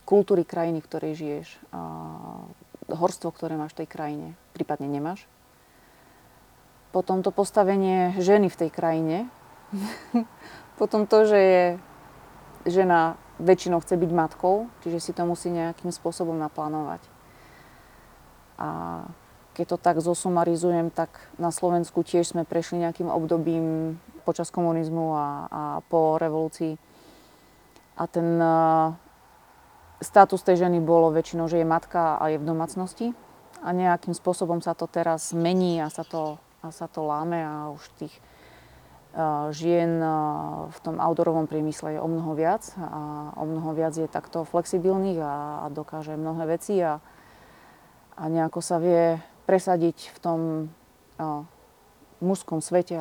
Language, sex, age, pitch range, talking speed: Slovak, female, 30-49, 155-175 Hz, 130 wpm